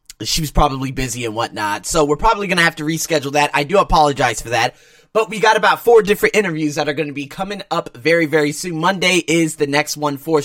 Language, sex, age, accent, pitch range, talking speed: English, male, 30-49, American, 145-180 Hz, 245 wpm